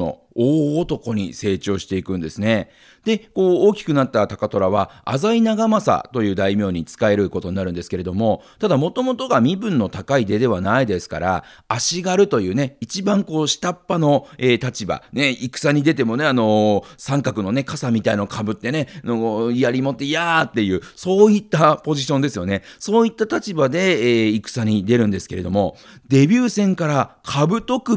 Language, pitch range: Japanese, 110-175 Hz